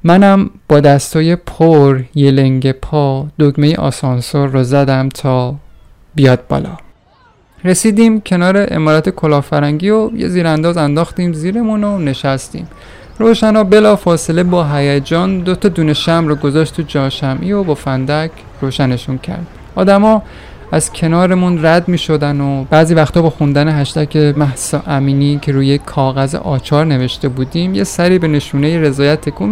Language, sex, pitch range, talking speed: Persian, male, 140-180 Hz, 135 wpm